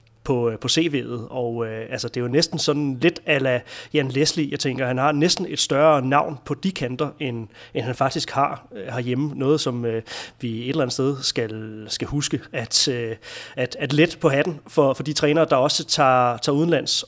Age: 30-49